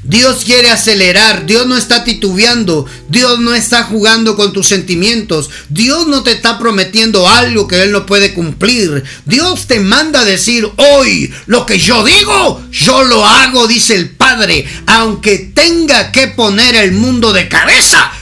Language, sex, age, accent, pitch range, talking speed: Spanish, male, 50-69, Mexican, 150-235 Hz, 160 wpm